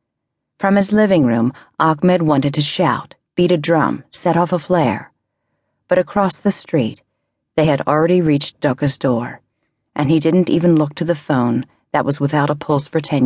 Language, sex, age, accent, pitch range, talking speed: English, female, 50-69, American, 135-165 Hz, 180 wpm